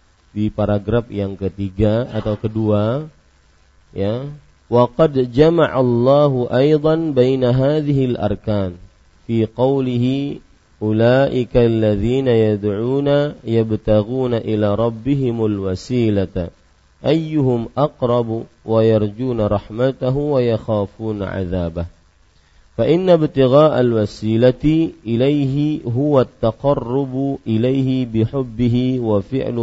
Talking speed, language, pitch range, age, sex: 80 wpm, Malay, 100-135 Hz, 40-59, male